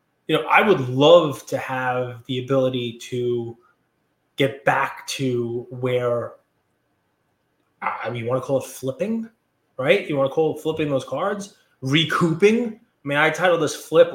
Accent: American